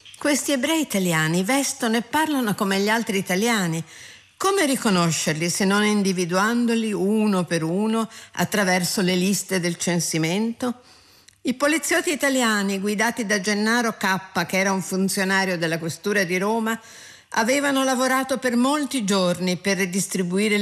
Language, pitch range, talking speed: Italian, 180-240 Hz, 130 wpm